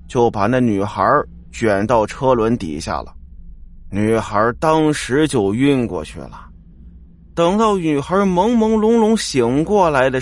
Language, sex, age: Chinese, male, 30-49